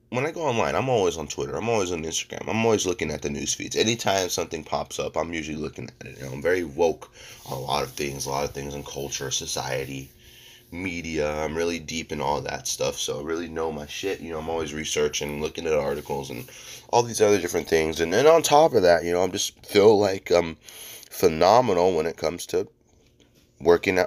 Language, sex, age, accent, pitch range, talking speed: English, male, 30-49, American, 80-120 Hz, 230 wpm